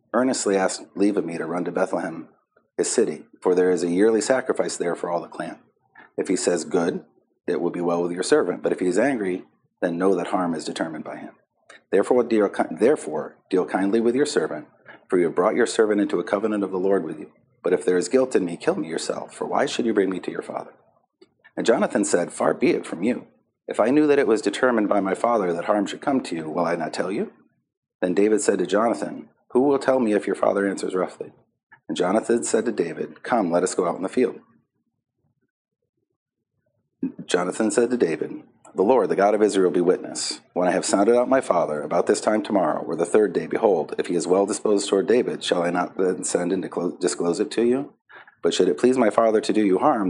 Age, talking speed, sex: 40-59, 240 wpm, male